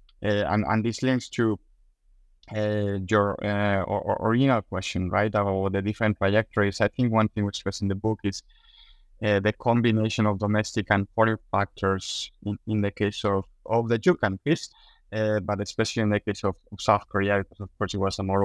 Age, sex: 20-39, male